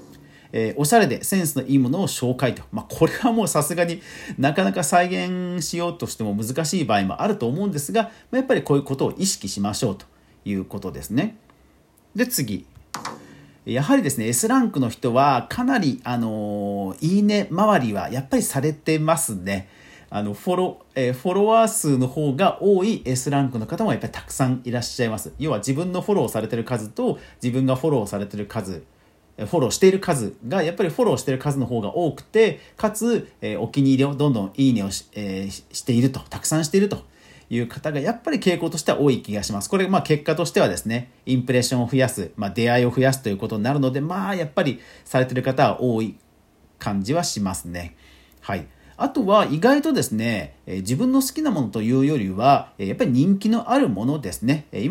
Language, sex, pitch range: Japanese, male, 110-180 Hz